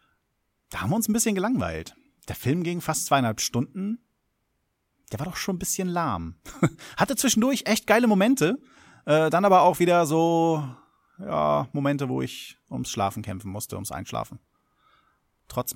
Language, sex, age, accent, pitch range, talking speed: German, male, 30-49, German, 110-165 Hz, 160 wpm